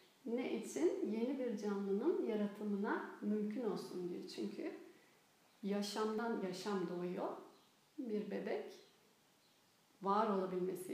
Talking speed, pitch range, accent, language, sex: 95 wpm, 200-245 Hz, native, Turkish, female